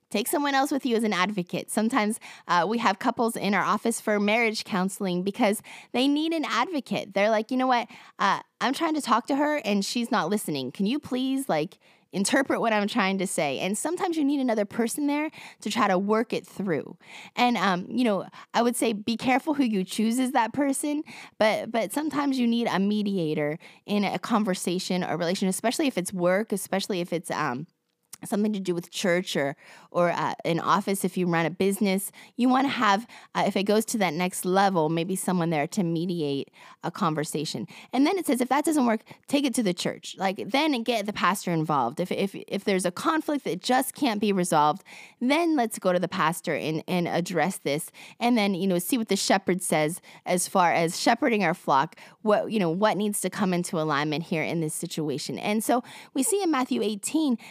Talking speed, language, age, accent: 215 wpm, English, 20-39, American